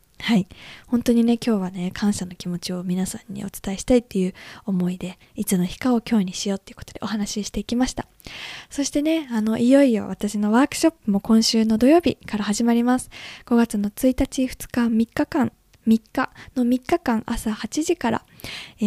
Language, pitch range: Japanese, 210-270 Hz